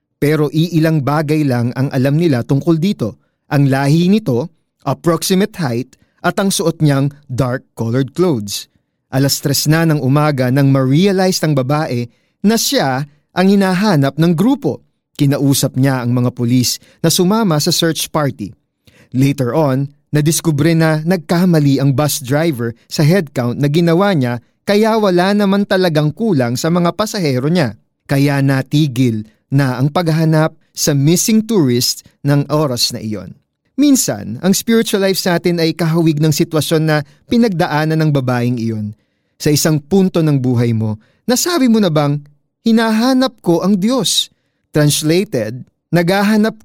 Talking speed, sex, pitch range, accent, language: 140 wpm, male, 135-180 Hz, native, Filipino